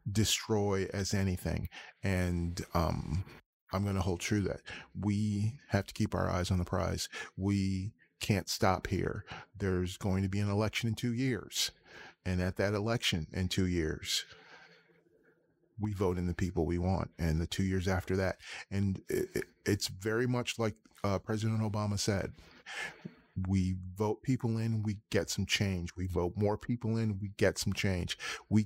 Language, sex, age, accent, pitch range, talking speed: English, male, 30-49, American, 95-110 Hz, 170 wpm